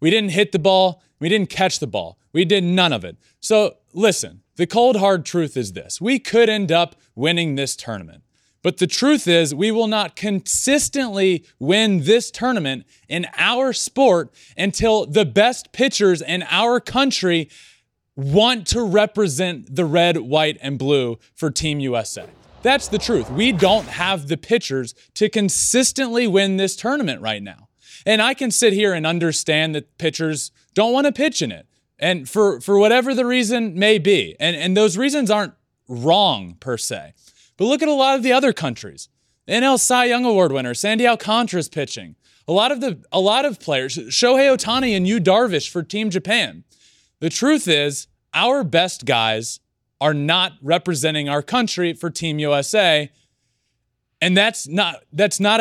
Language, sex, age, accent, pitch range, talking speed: English, male, 20-39, American, 150-220 Hz, 175 wpm